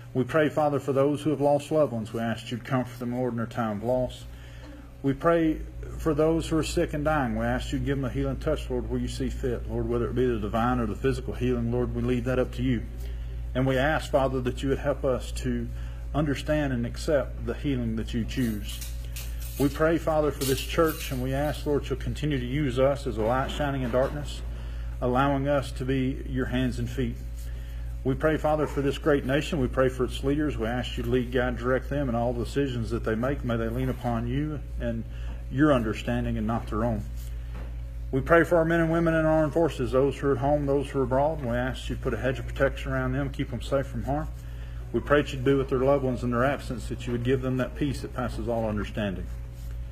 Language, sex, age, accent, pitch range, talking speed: English, male, 50-69, American, 115-140 Hz, 250 wpm